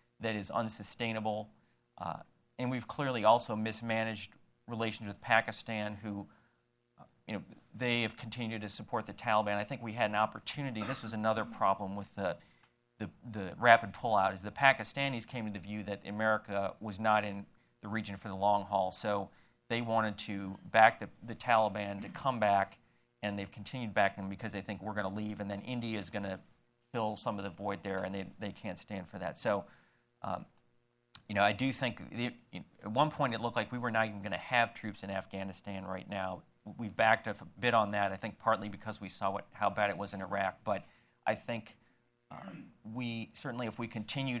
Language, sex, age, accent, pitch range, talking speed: English, male, 40-59, American, 100-115 Hz, 205 wpm